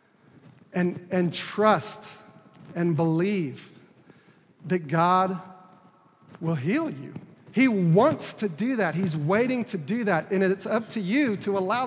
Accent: American